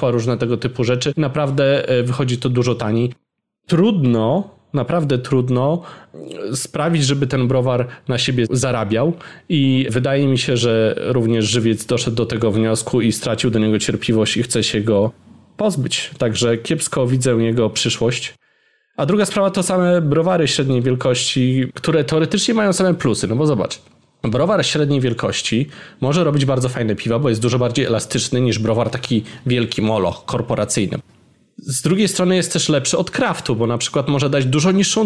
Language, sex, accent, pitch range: Polish, male, native, 120-160 Hz